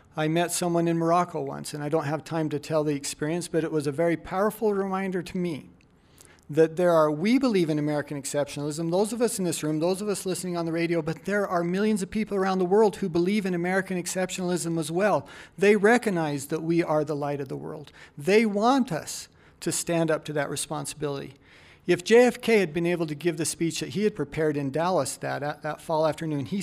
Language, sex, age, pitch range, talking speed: English, male, 50-69, 150-190 Hz, 230 wpm